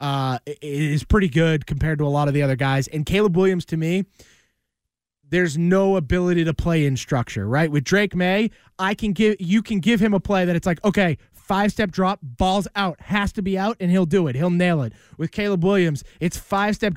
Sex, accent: male, American